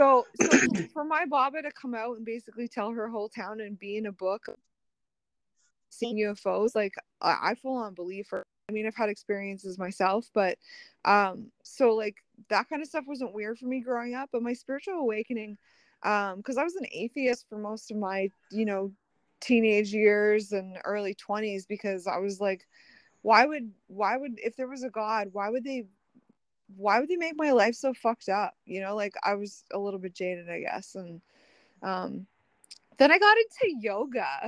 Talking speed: 200 wpm